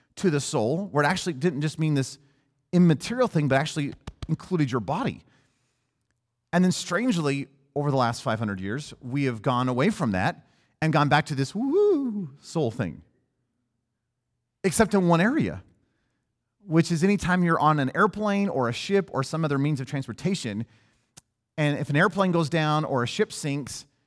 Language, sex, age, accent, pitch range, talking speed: English, male, 30-49, American, 125-170 Hz, 170 wpm